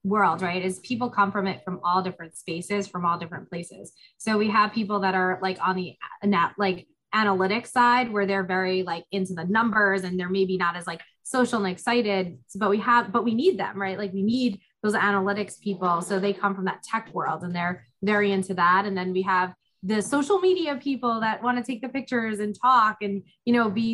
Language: English